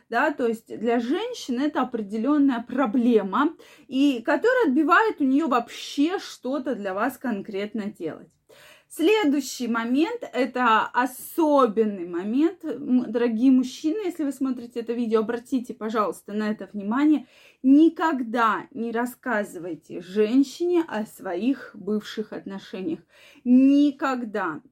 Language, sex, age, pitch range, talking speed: Russian, female, 20-39, 230-300 Hz, 110 wpm